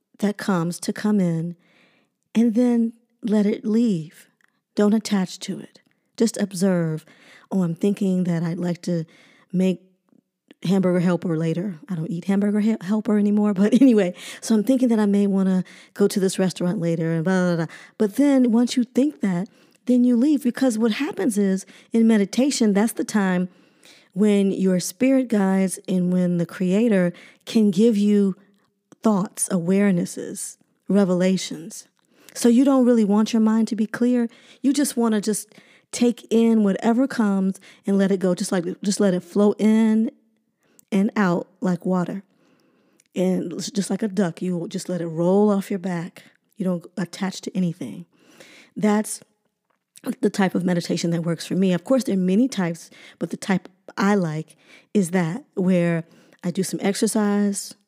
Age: 40-59